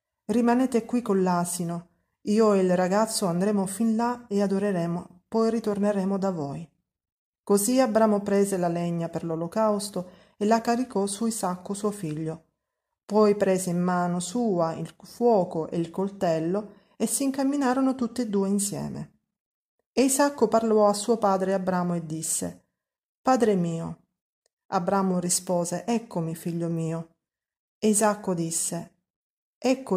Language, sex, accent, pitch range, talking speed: Italian, female, native, 175-215 Hz, 135 wpm